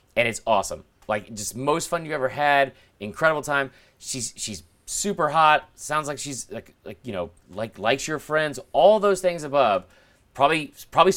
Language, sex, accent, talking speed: English, male, American, 175 wpm